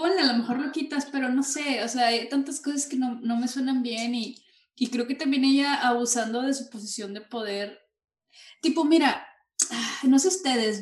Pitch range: 205-275 Hz